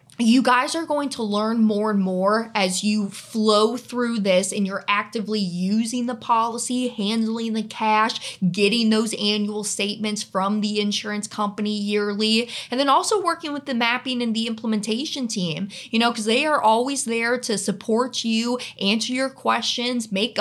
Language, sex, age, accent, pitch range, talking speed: English, female, 20-39, American, 205-250 Hz, 170 wpm